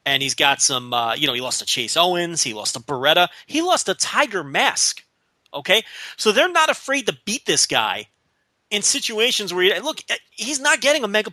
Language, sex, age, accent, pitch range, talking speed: English, male, 30-49, American, 155-230 Hz, 210 wpm